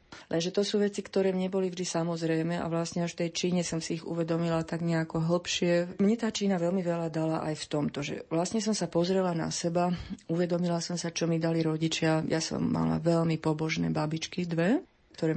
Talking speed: 205 wpm